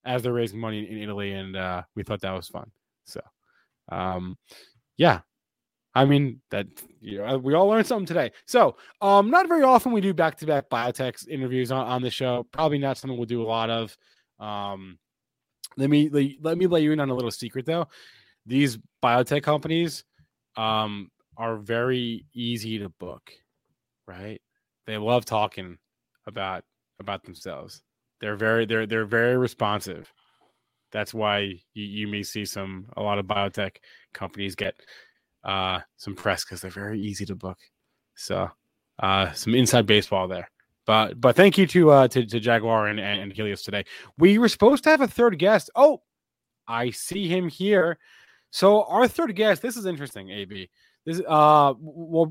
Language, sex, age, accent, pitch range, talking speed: English, male, 20-39, American, 105-155 Hz, 170 wpm